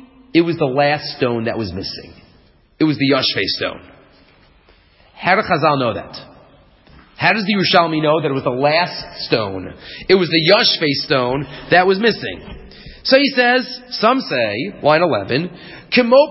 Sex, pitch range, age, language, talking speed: male, 150-245 Hz, 40-59, English, 165 wpm